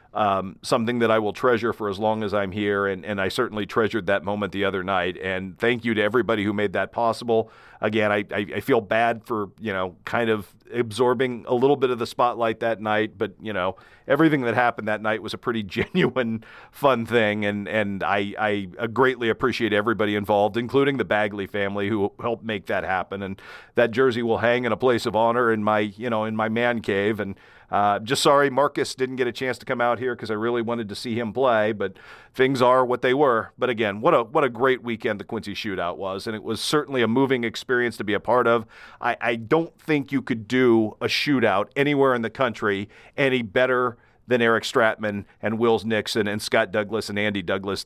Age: 40-59